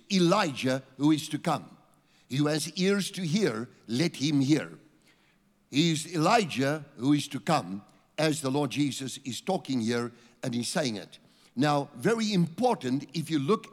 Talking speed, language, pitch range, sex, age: 165 wpm, English, 135-175 Hz, male, 60-79